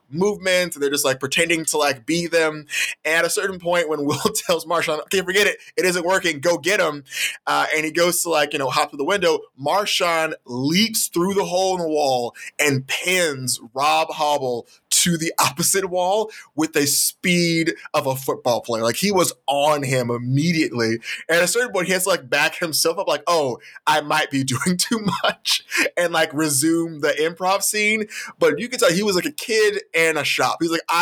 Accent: American